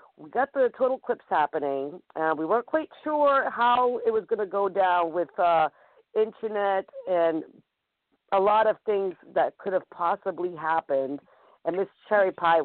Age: 50-69